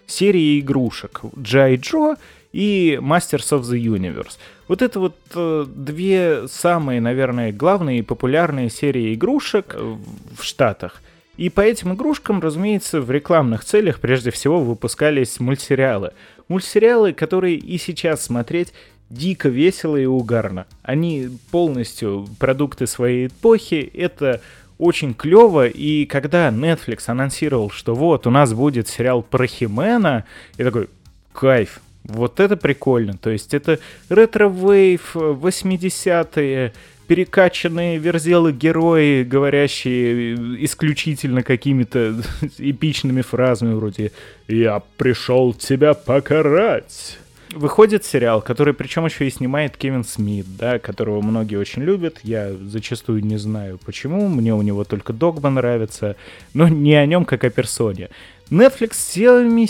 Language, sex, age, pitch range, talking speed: Russian, male, 20-39, 120-175 Hz, 120 wpm